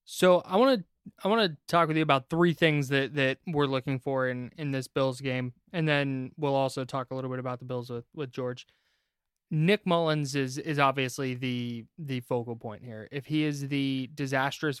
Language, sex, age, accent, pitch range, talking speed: English, male, 20-39, American, 125-150 Hz, 205 wpm